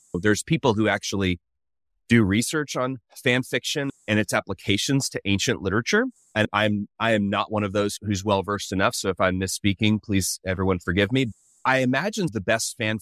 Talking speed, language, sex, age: 180 wpm, English, male, 30-49